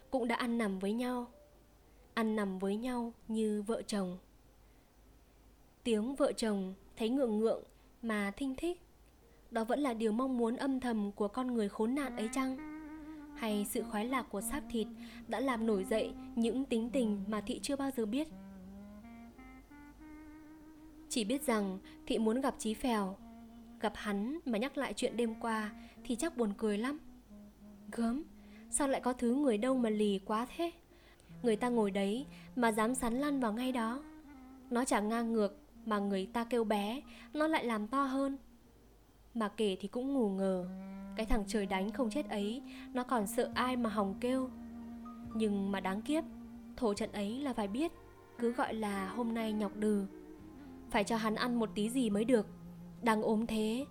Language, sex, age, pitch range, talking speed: Vietnamese, female, 20-39, 215-260 Hz, 180 wpm